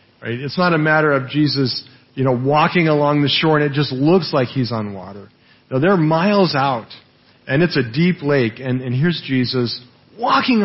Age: 40-59